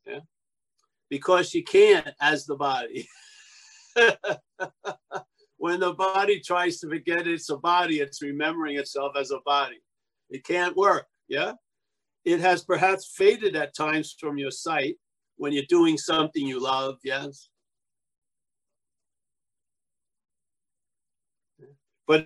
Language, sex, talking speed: English, male, 115 wpm